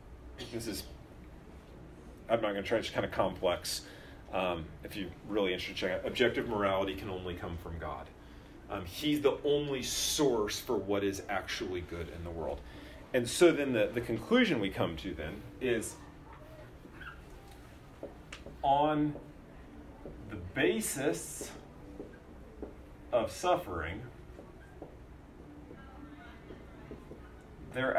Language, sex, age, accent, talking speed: English, male, 40-59, American, 120 wpm